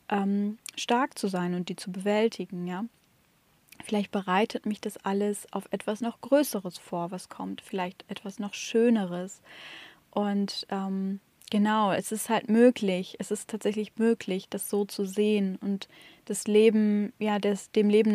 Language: German